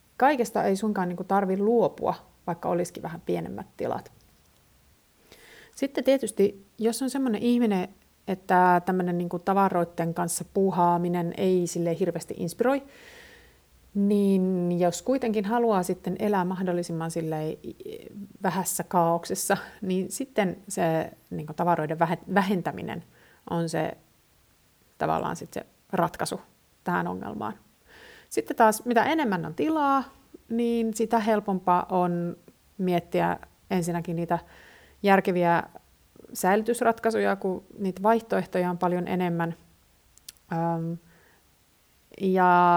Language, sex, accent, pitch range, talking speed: Finnish, female, native, 175-215 Hz, 95 wpm